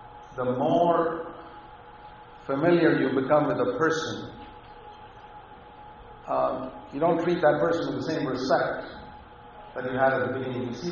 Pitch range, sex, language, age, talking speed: 140-170 Hz, male, English, 60-79, 145 wpm